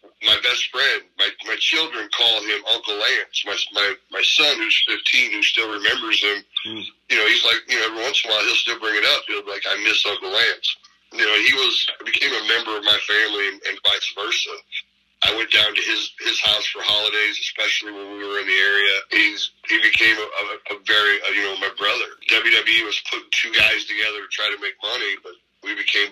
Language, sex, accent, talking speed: English, male, American, 225 wpm